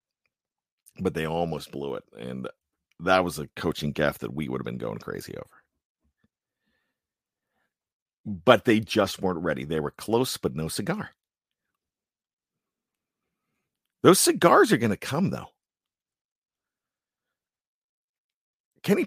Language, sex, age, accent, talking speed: English, male, 50-69, American, 120 wpm